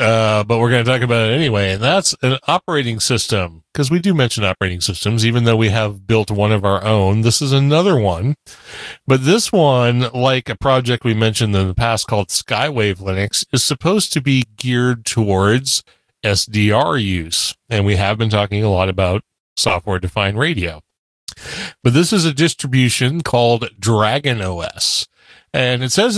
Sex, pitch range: male, 105-135 Hz